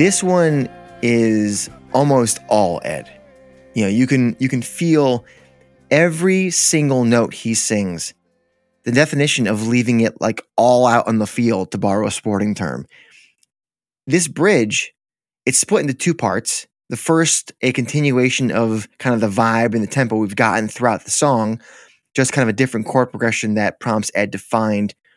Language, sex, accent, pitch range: English, male, American, 110-140 Hz